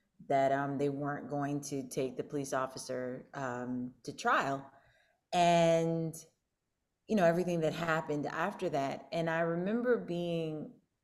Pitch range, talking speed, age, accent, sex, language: 155-200 Hz, 135 wpm, 30-49, American, female, English